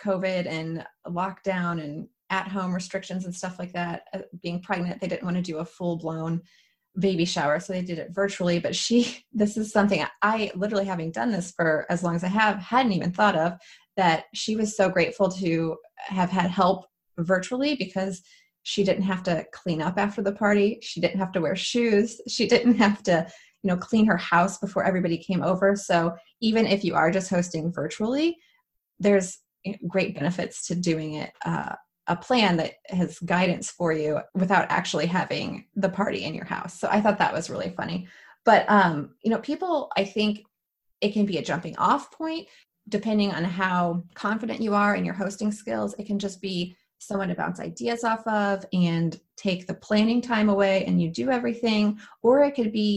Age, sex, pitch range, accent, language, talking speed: 30-49, female, 175-210 Hz, American, English, 195 wpm